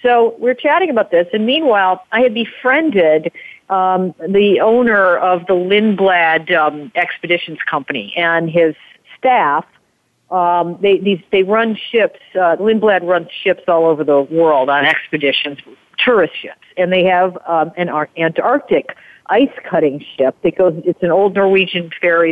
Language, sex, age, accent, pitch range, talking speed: English, female, 50-69, American, 165-190 Hz, 140 wpm